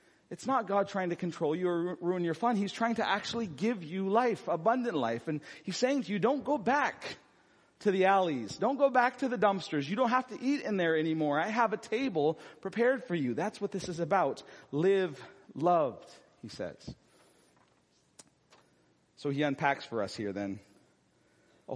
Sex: male